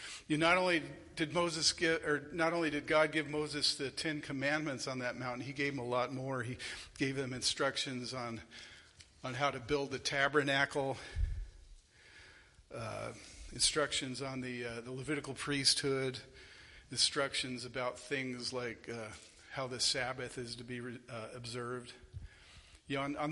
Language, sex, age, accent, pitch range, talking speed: English, male, 50-69, American, 120-145 Hz, 155 wpm